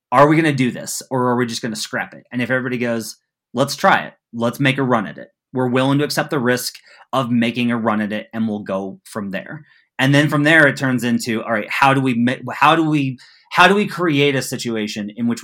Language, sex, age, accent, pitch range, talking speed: English, male, 30-49, American, 120-155 Hz, 260 wpm